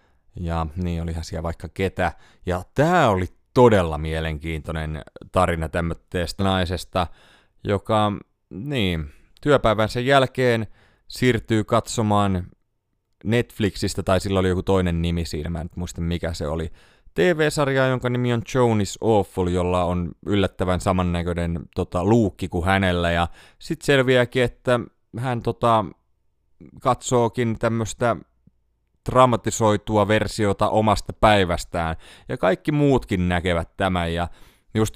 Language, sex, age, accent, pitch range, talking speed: Finnish, male, 30-49, native, 85-110 Hz, 115 wpm